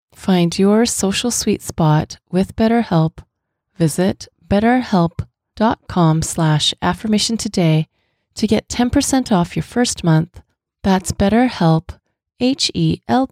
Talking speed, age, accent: 95 wpm, 30-49, American